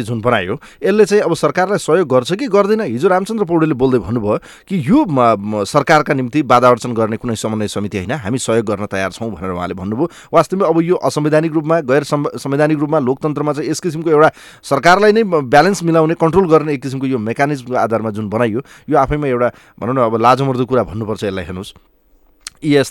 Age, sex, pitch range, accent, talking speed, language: 30-49, male, 120-160 Hz, Indian, 85 wpm, English